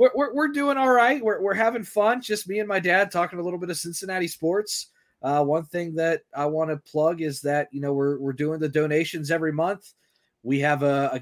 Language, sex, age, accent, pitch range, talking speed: English, male, 20-39, American, 145-175 Hz, 235 wpm